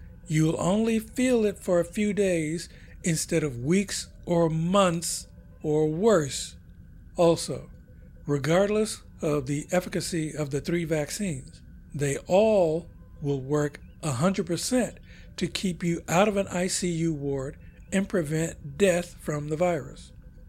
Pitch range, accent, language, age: 145-185 Hz, American, English, 60-79